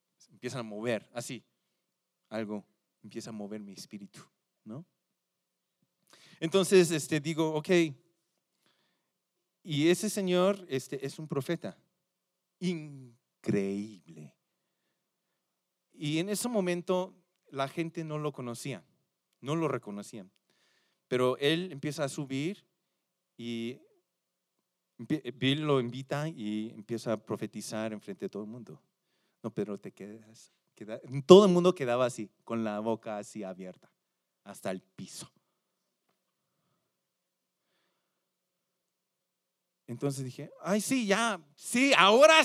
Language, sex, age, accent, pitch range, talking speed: Spanish, male, 40-59, Mexican, 130-180 Hz, 110 wpm